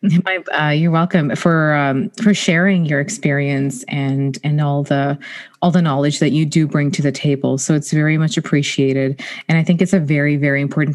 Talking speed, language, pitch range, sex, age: 205 wpm, English, 145-175 Hz, female, 30-49